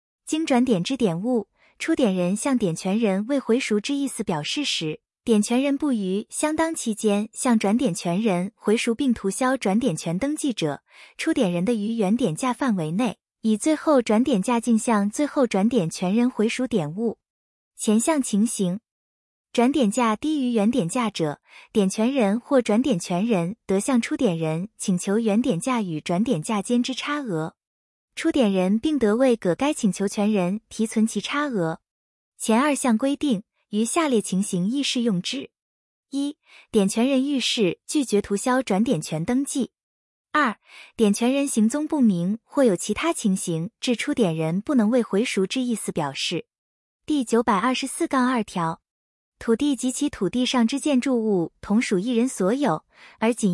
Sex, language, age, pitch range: female, Chinese, 20-39, 200-260 Hz